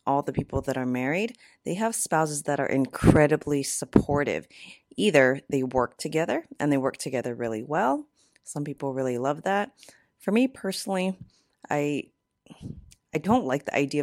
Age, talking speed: 30-49, 160 wpm